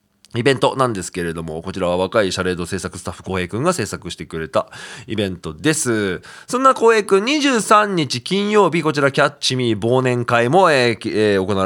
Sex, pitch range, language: male, 100-170 Hz, Japanese